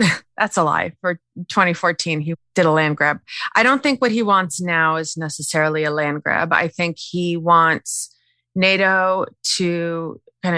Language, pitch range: English, 160-180 Hz